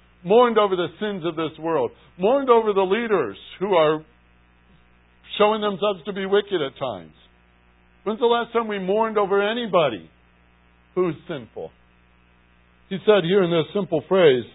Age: 60-79